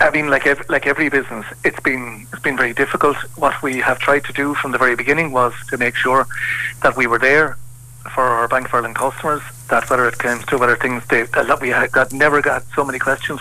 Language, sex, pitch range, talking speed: English, male, 125-145 Hz, 235 wpm